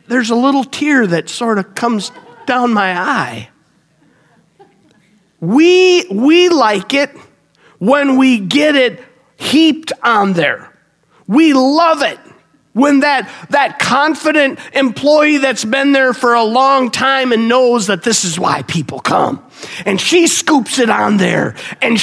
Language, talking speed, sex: English, 140 wpm, male